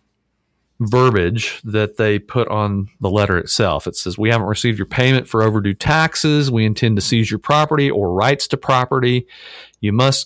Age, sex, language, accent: 40-59, male, English, American